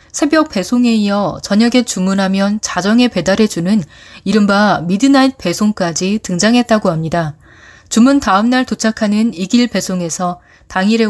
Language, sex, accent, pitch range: Korean, female, native, 185-255 Hz